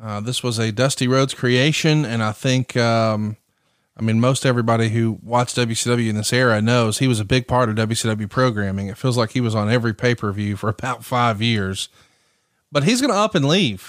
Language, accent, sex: English, American, male